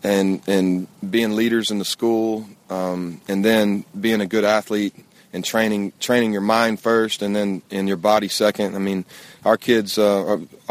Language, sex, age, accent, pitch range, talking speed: English, male, 30-49, American, 95-110 Hz, 175 wpm